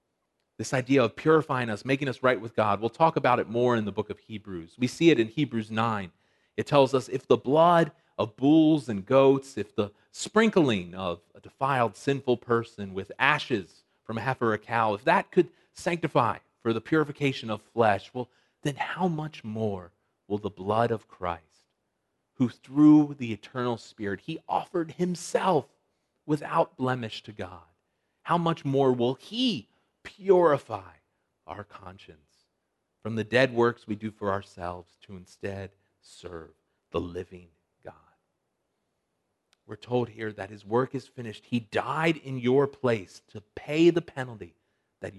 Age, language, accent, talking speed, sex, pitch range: 40-59, English, American, 165 wpm, male, 105-150 Hz